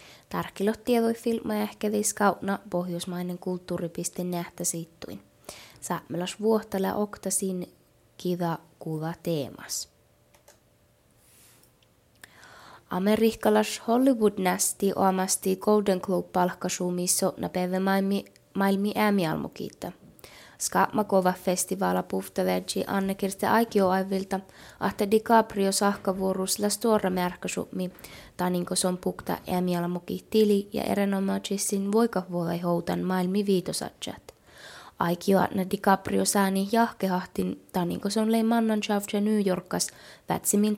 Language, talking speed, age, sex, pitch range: Finnish, 70 wpm, 20-39, female, 180-210 Hz